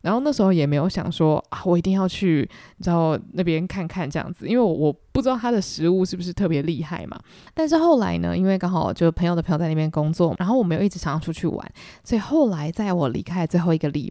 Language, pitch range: Chinese, 165-220 Hz